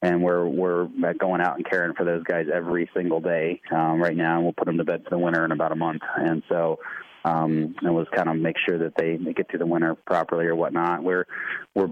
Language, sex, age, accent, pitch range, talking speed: English, male, 20-39, American, 85-95 Hz, 250 wpm